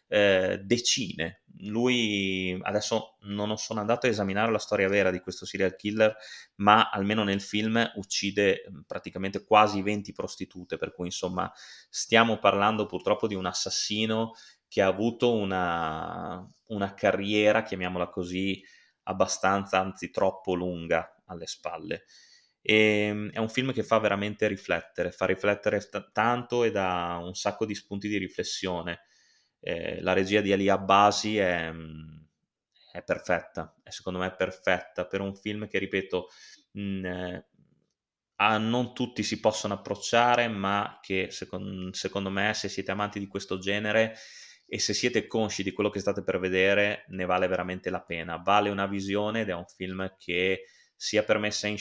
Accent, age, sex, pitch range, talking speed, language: native, 20-39, male, 95-105 Hz, 150 wpm, Italian